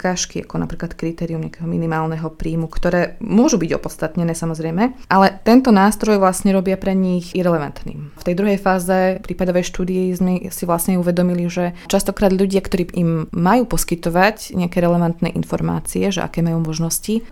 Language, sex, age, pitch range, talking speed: Slovak, female, 20-39, 165-195 Hz, 145 wpm